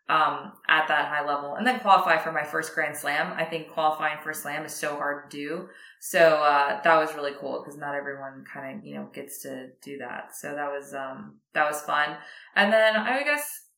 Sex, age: female, 20-39